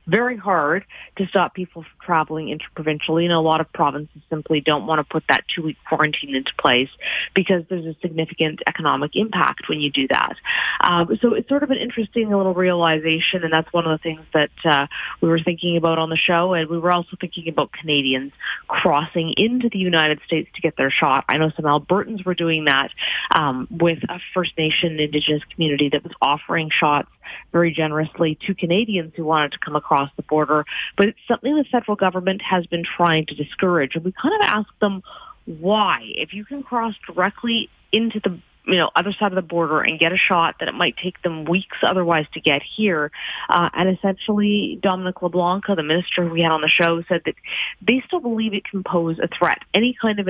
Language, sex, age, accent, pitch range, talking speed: English, female, 30-49, American, 155-190 Hz, 205 wpm